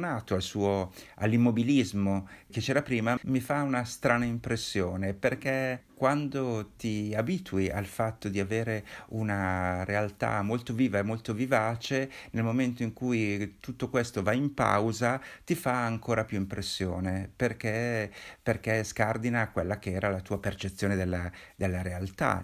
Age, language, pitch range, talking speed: 50-69, Italian, 95-115 Hz, 135 wpm